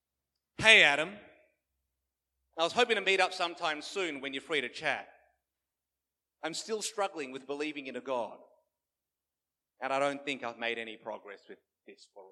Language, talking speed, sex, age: English, 165 wpm, male, 30-49